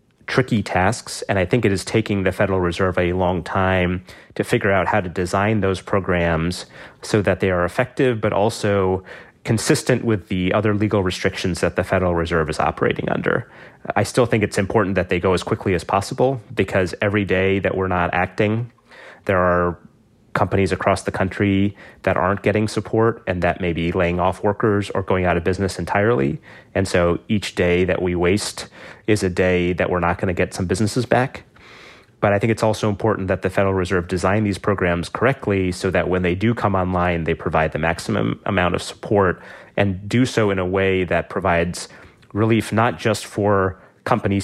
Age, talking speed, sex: 30-49, 195 wpm, male